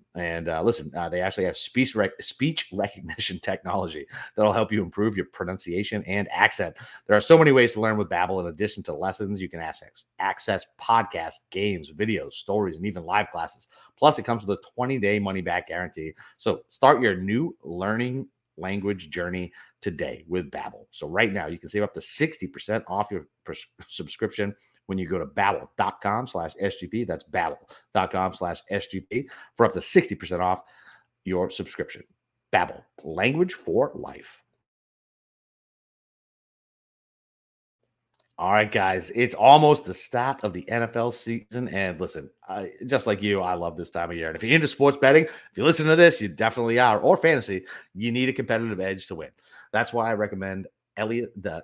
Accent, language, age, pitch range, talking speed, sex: American, English, 30-49, 95-120 Hz, 170 wpm, male